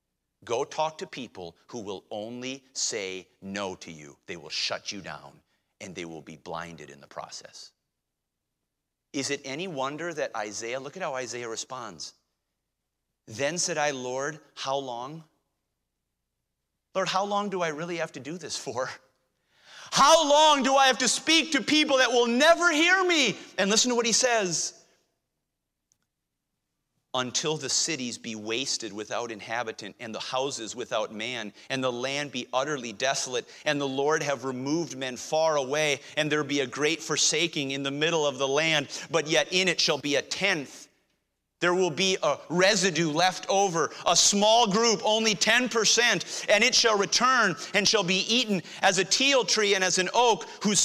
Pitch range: 125-190 Hz